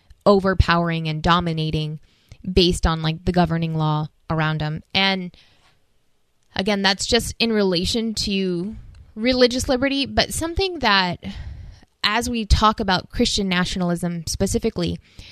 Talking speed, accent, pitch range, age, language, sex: 120 wpm, American, 170-220 Hz, 20-39, English, female